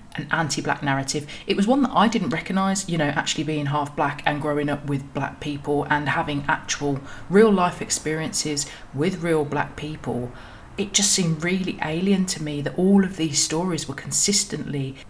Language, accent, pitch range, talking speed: English, British, 140-175 Hz, 185 wpm